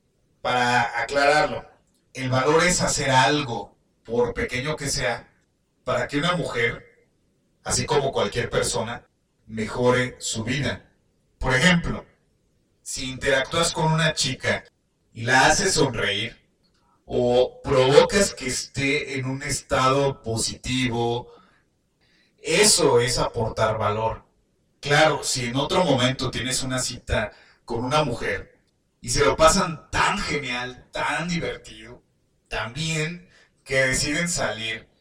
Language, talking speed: Spanish, 115 wpm